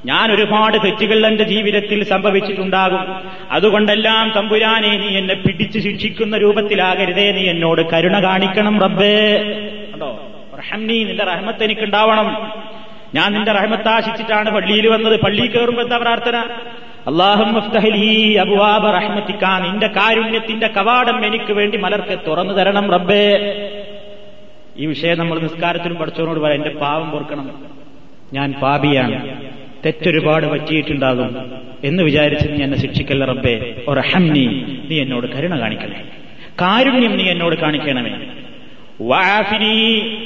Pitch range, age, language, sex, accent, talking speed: 155-215 Hz, 30-49, Malayalam, male, native, 100 wpm